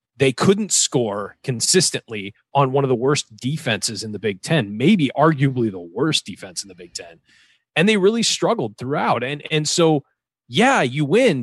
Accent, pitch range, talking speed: American, 125-170 Hz, 180 wpm